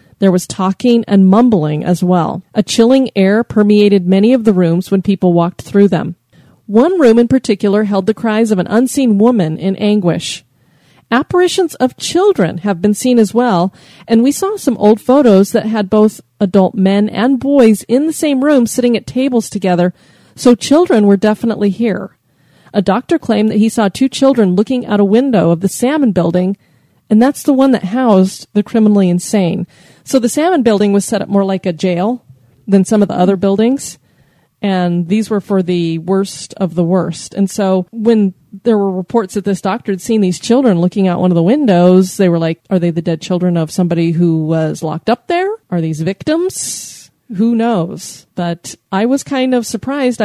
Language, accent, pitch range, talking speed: English, American, 185-235 Hz, 195 wpm